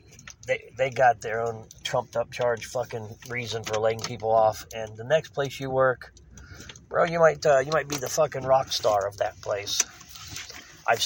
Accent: American